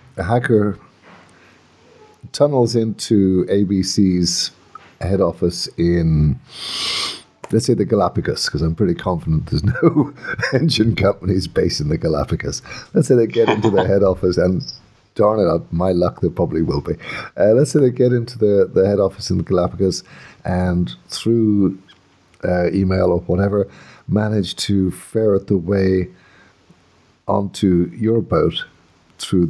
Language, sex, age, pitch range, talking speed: English, male, 50-69, 90-110 Hz, 140 wpm